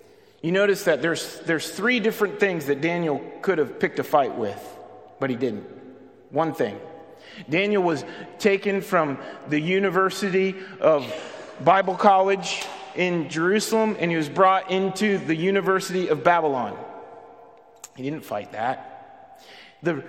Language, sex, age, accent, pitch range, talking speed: English, male, 30-49, American, 155-200 Hz, 135 wpm